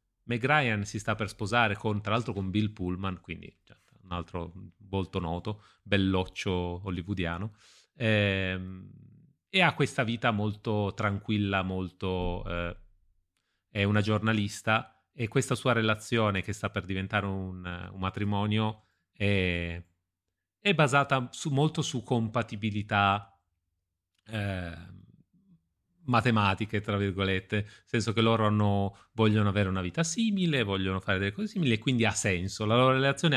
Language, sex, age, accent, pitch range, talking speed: Italian, male, 30-49, native, 95-120 Hz, 135 wpm